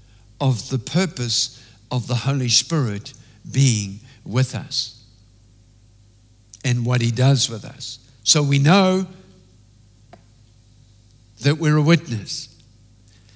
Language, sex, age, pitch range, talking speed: English, male, 60-79, 110-145 Hz, 105 wpm